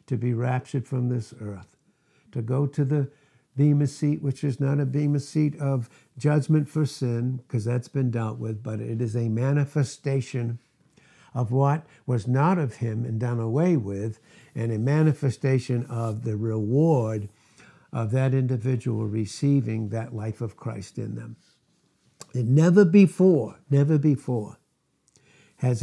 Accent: American